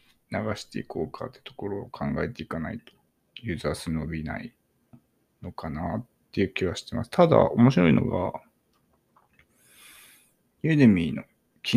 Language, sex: Japanese, male